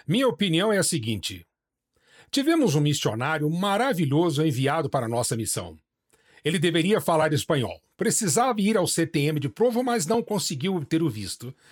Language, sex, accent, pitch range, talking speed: English, male, Brazilian, 145-210 Hz, 150 wpm